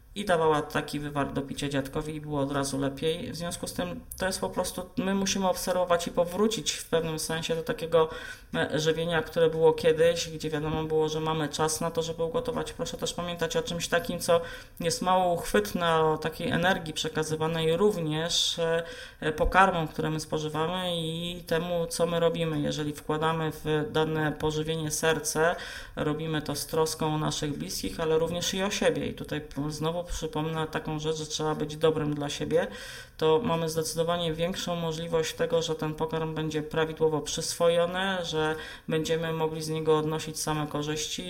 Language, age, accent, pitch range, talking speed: Polish, 30-49, native, 155-170 Hz, 170 wpm